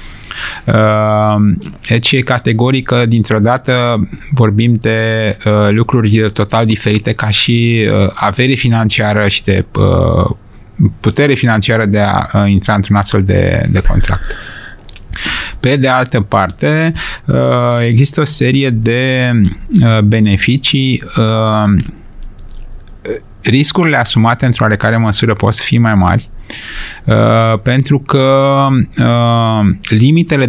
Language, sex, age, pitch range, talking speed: Romanian, male, 30-49, 105-125 Hz, 95 wpm